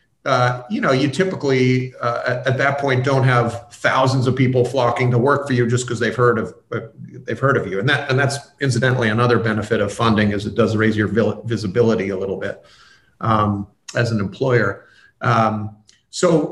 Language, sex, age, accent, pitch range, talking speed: English, male, 40-59, American, 110-130 Hz, 190 wpm